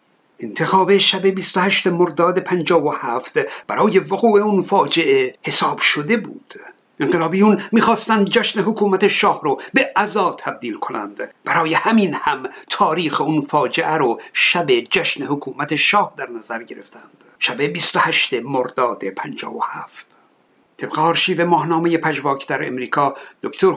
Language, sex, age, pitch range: Persian, male, 60-79, 170-210 Hz